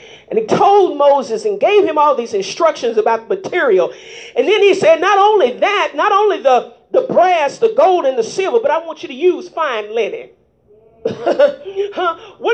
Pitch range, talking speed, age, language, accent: 330-450 Hz, 190 wpm, 40-59, English, American